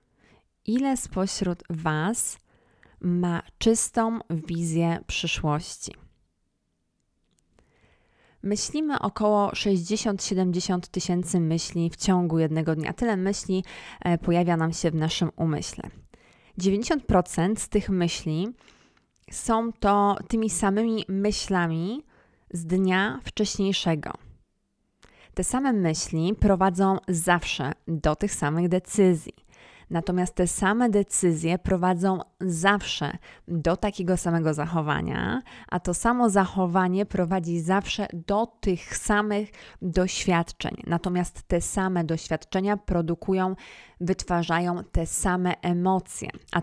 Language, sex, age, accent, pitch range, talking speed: Polish, female, 20-39, native, 170-205 Hz, 95 wpm